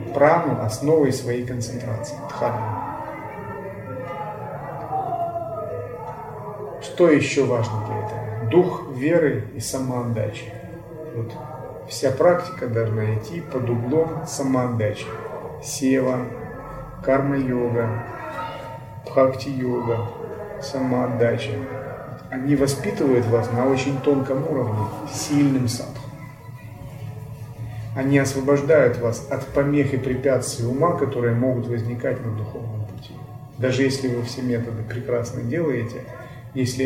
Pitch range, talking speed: 120-140 Hz, 95 wpm